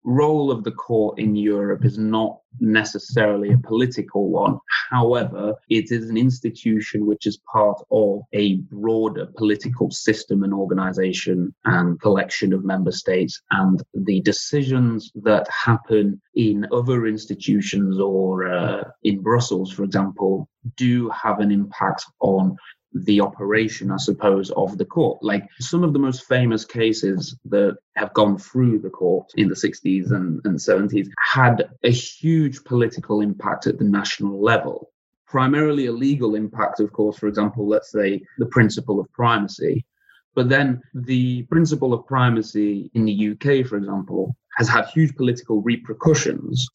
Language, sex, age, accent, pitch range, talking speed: English, male, 30-49, British, 100-125 Hz, 150 wpm